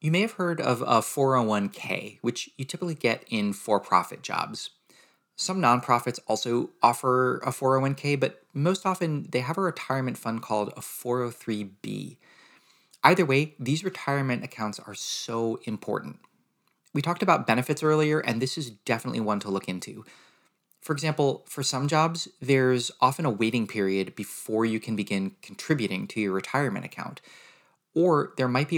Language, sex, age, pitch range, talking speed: English, male, 30-49, 115-155 Hz, 155 wpm